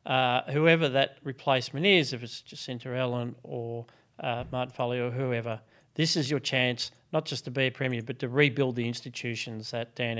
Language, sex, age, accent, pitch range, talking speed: English, male, 40-59, Australian, 120-145 Hz, 190 wpm